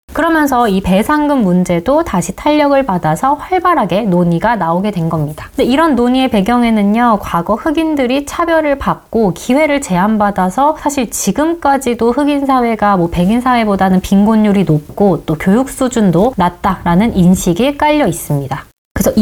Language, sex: Korean, female